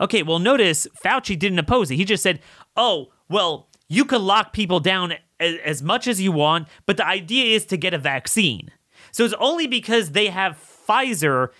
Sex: male